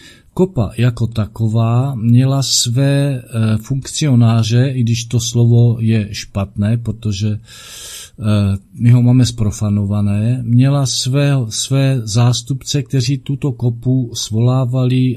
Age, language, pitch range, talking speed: 50-69, Czech, 105-125 Hz, 105 wpm